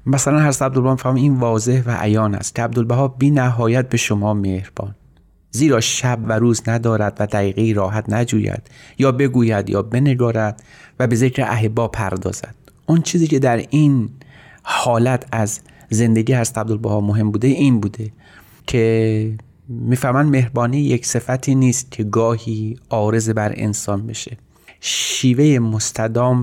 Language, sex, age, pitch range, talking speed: Persian, male, 30-49, 110-130 Hz, 145 wpm